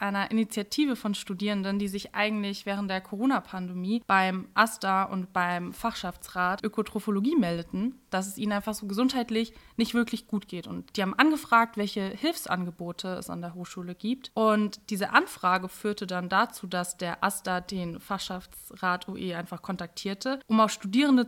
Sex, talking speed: female, 155 wpm